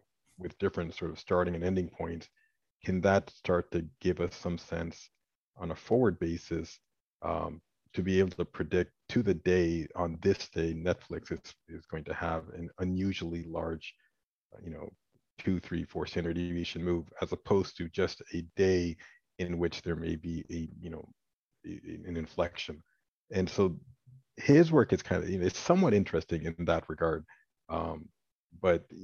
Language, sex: English, male